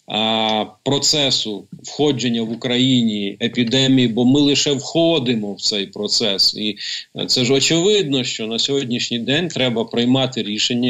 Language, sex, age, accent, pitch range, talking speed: Ukrainian, male, 50-69, native, 120-150 Hz, 125 wpm